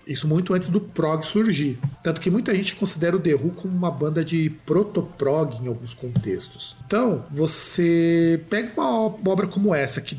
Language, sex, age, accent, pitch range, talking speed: Portuguese, male, 40-59, Brazilian, 155-210 Hz, 175 wpm